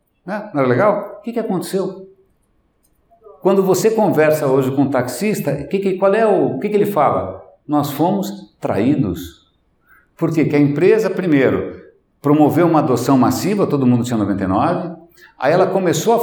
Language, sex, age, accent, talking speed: Portuguese, male, 60-79, Brazilian, 160 wpm